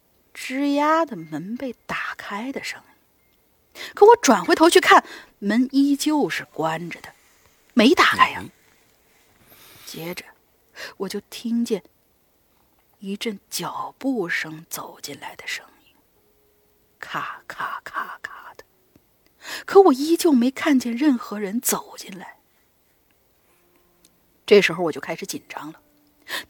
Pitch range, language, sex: 205-315 Hz, Chinese, female